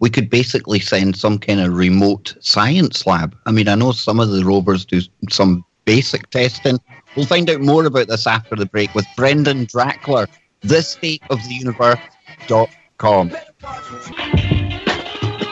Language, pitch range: English, 100-130 Hz